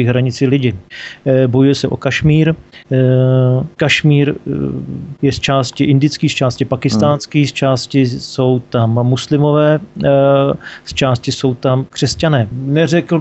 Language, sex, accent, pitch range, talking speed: Czech, male, native, 130-150 Hz, 115 wpm